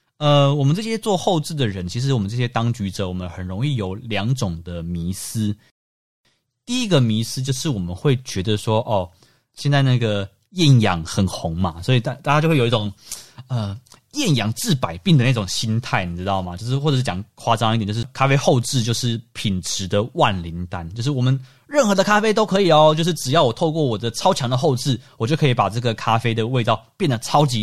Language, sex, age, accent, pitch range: Chinese, male, 20-39, native, 110-140 Hz